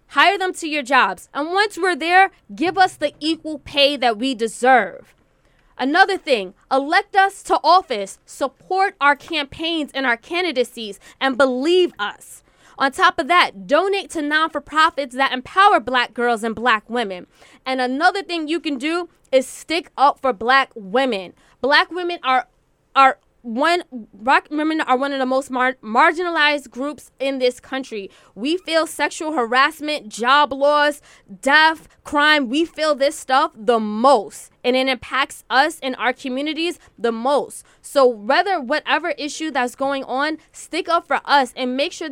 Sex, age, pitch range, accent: female, 20-39, 255-315 Hz, American